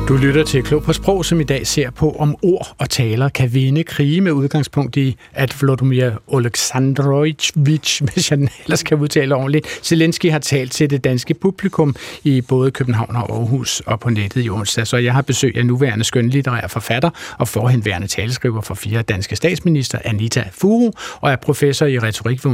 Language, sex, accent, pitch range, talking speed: Danish, male, native, 125-155 Hz, 185 wpm